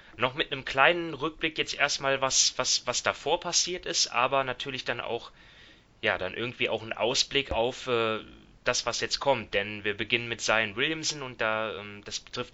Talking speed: 190 wpm